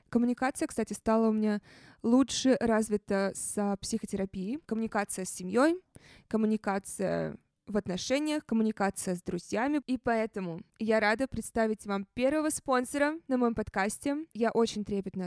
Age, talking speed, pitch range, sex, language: 20-39, 125 wpm, 195-230 Hz, female, Russian